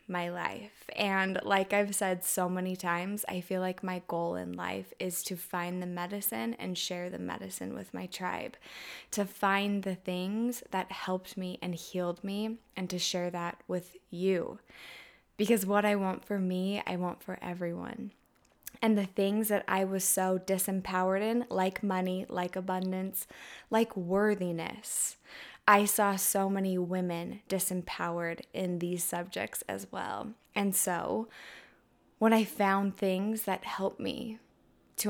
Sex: female